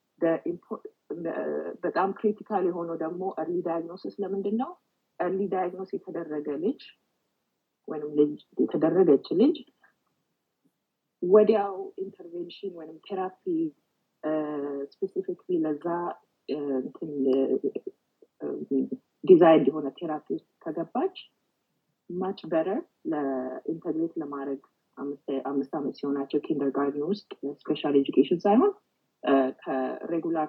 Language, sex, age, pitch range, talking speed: English, female, 30-49, 145-205 Hz, 65 wpm